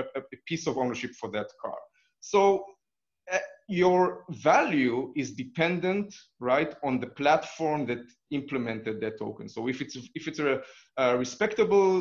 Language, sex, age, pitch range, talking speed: English, male, 30-49, 125-165 Hz, 145 wpm